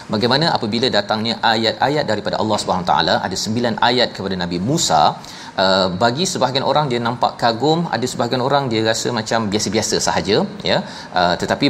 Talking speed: 155 wpm